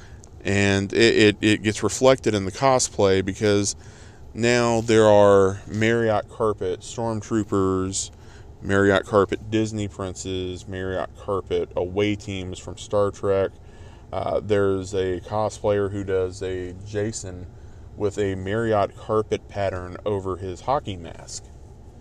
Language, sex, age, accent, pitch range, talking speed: English, male, 20-39, American, 95-110 Hz, 120 wpm